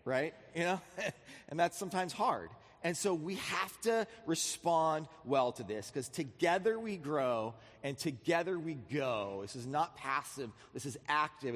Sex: male